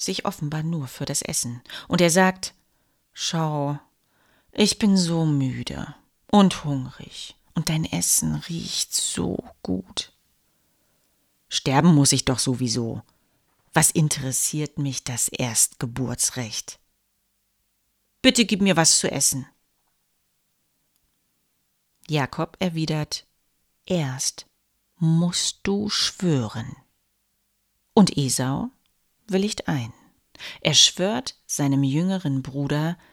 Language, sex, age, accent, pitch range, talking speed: German, female, 40-59, German, 125-180 Hz, 95 wpm